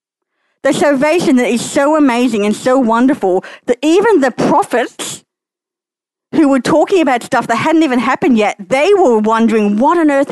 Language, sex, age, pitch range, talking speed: English, female, 50-69, 210-310 Hz, 170 wpm